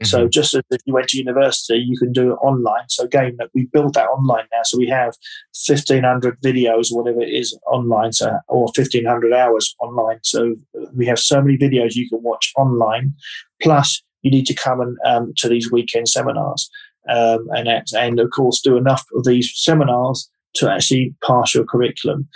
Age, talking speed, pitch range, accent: 20-39, 185 wpm, 120-135 Hz, British